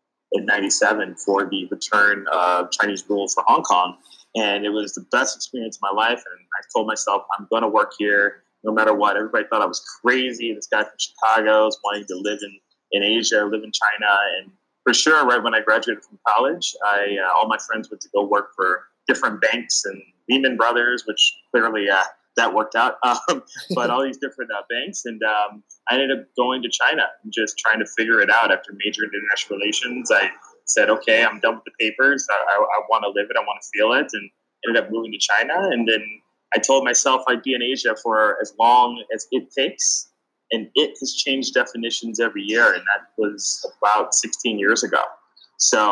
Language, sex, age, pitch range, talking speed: English, male, 20-39, 105-125 Hz, 215 wpm